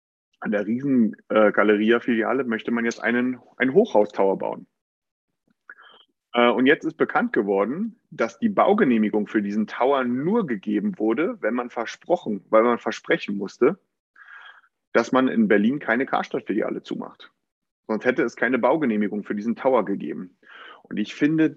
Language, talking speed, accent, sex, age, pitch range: German, 145 wpm, German, male, 40-59, 110-150 Hz